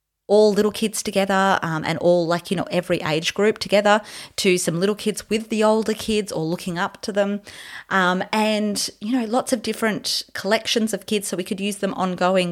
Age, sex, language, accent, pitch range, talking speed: 30-49, female, English, Australian, 170-220 Hz, 205 wpm